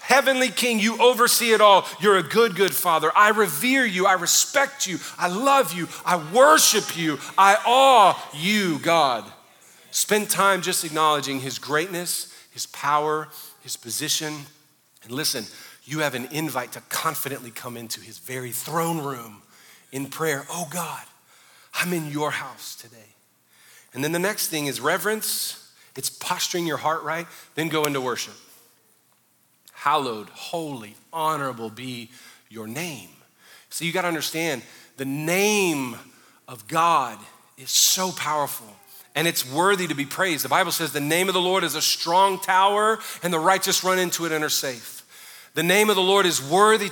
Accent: American